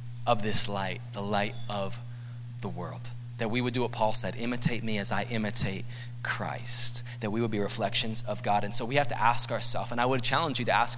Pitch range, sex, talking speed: 120-175 Hz, male, 230 wpm